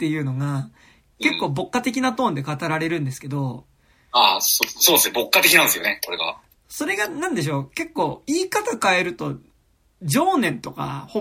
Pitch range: 155-245 Hz